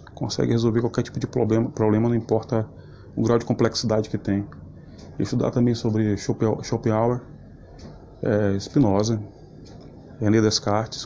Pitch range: 110-125 Hz